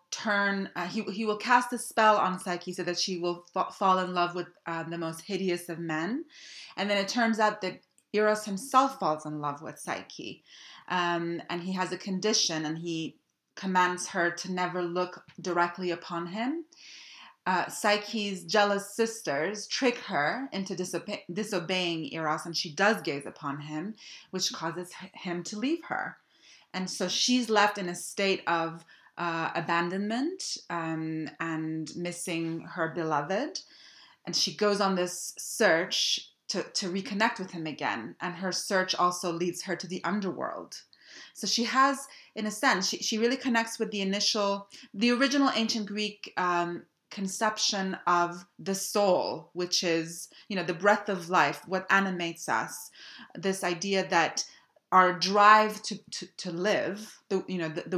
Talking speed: 160 wpm